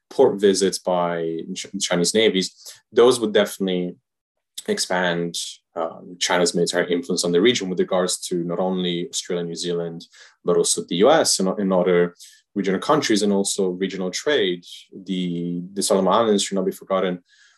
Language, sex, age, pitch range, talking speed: English, male, 30-49, 85-95 Hz, 155 wpm